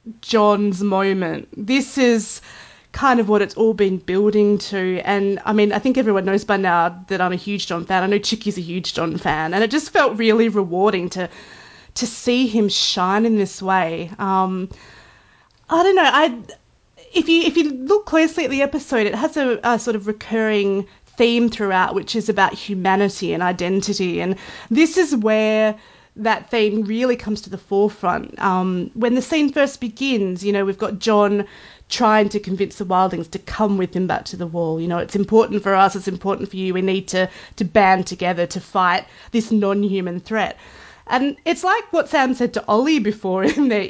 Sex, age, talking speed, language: female, 30-49, 195 wpm, English